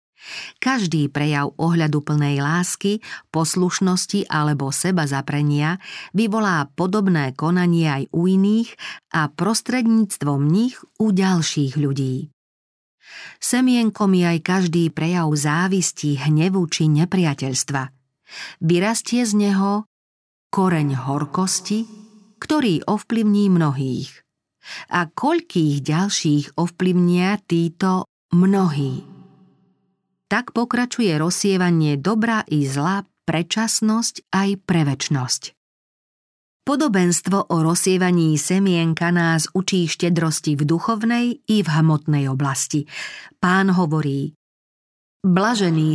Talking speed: 90 wpm